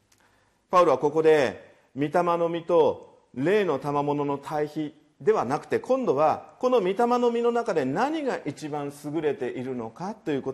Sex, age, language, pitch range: male, 40-59, Japanese, 150-235 Hz